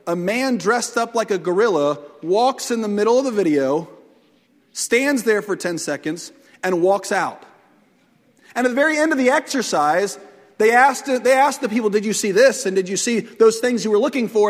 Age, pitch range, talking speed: 40-59, 240-320 Hz, 205 wpm